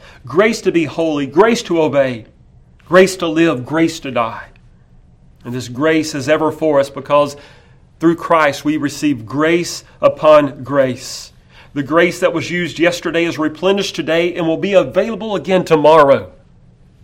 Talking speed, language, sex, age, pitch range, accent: 150 wpm, English, male, 40-59, 130-160 Hz, American